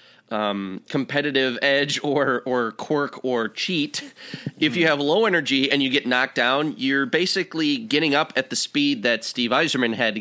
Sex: male